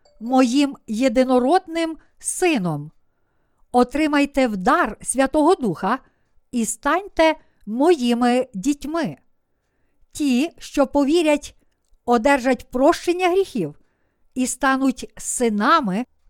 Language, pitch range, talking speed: Ukrainian, 220-295 Hz, 75 wpm